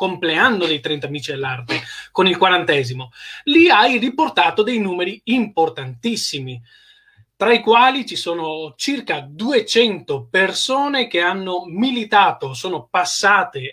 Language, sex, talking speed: Italian, male, 120 wpm